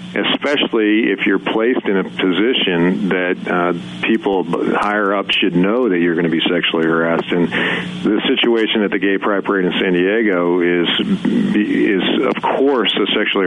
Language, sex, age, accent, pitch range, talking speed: English, male, 50-69, American, 90-110 Hz, 170 wpm